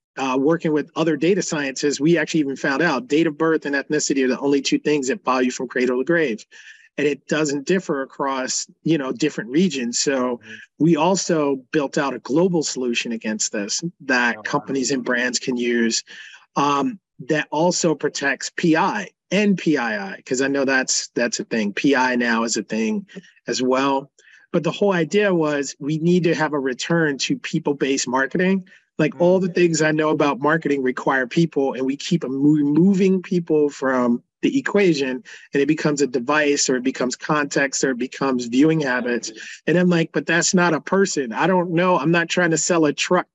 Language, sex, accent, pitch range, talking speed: English, male, American, 135-165 Hz, 190 wpm